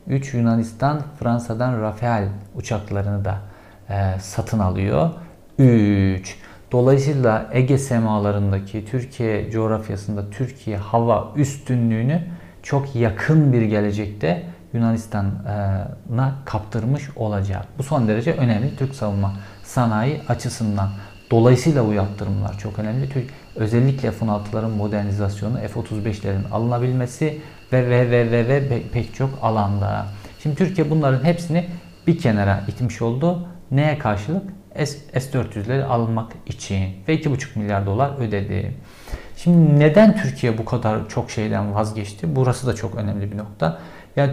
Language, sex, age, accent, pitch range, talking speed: Turkish, male, 50-69, native, 105-135 Hz, 115 wpm